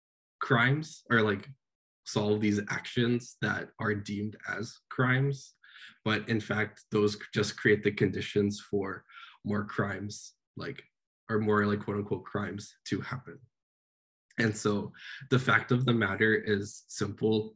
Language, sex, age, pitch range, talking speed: English, male, 10-29, 105-115 Hz, 135 wpm